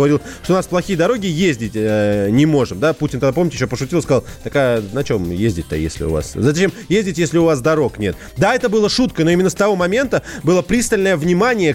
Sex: male